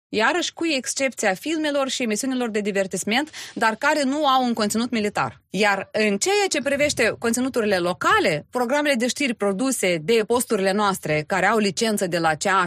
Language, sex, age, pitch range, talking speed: Romanian, female, 20-39, 190-260 Hz, 165 wpm